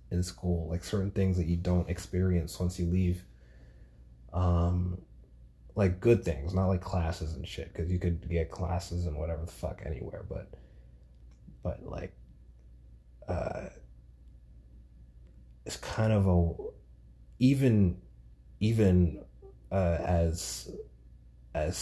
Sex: male